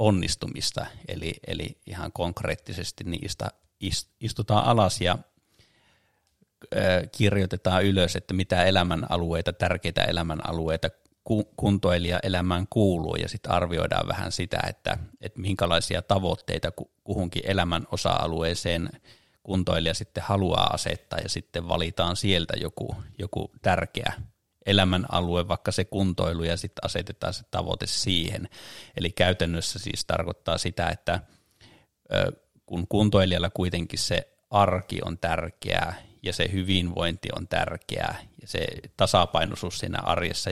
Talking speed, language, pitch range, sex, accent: 110 wpm, Finnish, 85-100 Hz, male, native